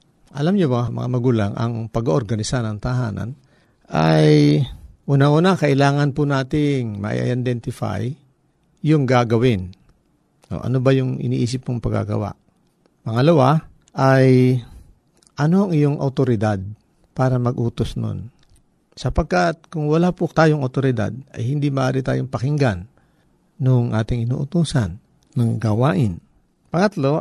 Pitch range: 105-145 Hz